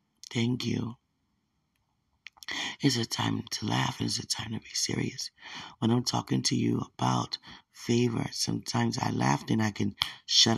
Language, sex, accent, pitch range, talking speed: English, male, American, 105-140 Hz, 155 wpm